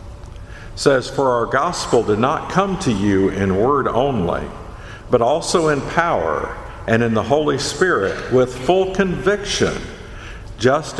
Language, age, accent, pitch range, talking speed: English, 50-69, American, 100-135 Hz, 135 wpm